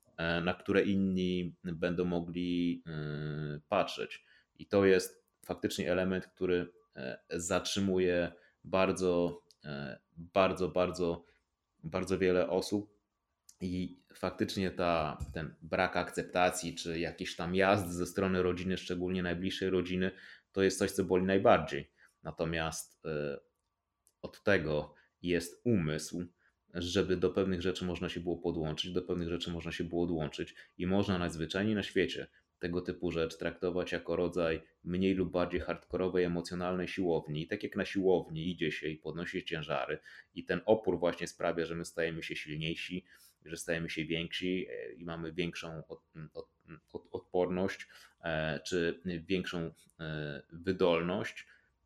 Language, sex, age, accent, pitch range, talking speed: Polish, male, 30-49, native, 85-95 Hz, 125 wpm